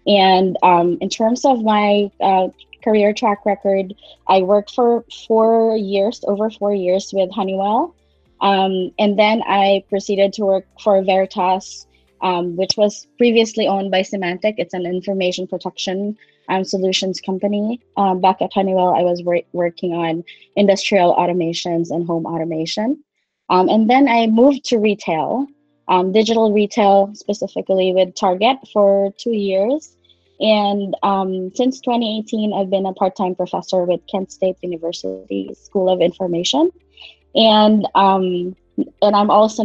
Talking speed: 140 wpm